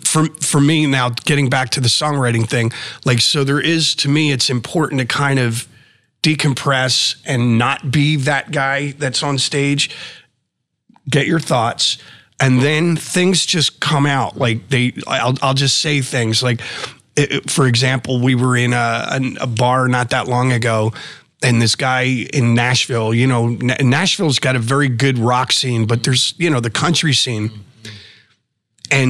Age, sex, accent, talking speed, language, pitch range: 30-49, male, American, 175 wpm, English, 120-145 Hz